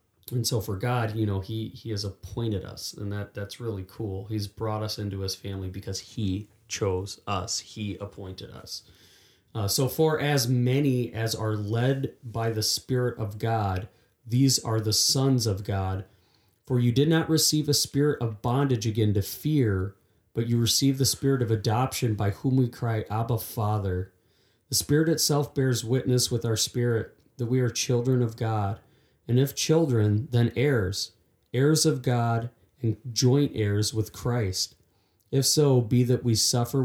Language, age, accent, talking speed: English, 30-49, American, 175 wpm